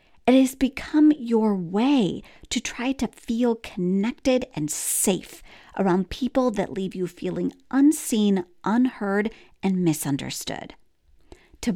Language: English